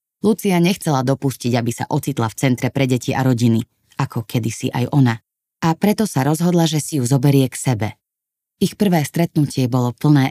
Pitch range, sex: 125-155 Hz, female